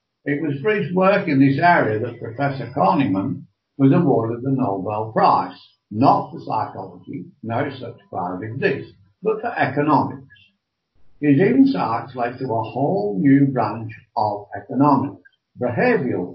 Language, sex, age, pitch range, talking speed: English, male, 70-89, 110-150 Hz, 135 wpm